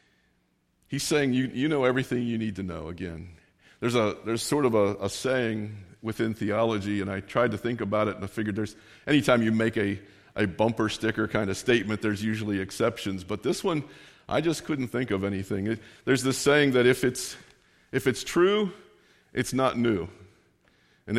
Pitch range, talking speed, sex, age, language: 105-130 Hz, 195 wpm, male, 50-69, English